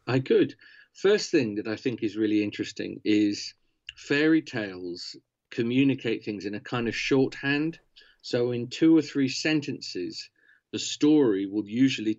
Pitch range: 110-145 Hz